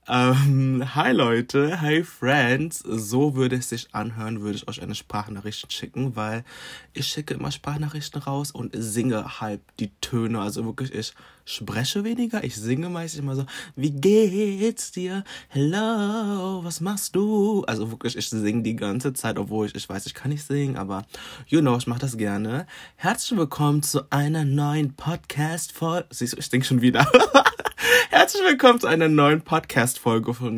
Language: German